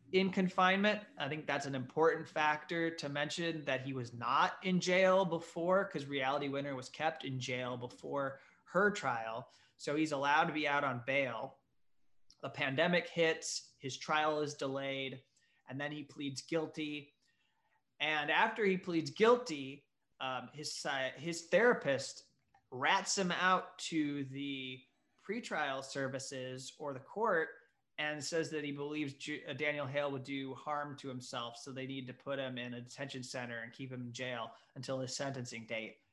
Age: 30-49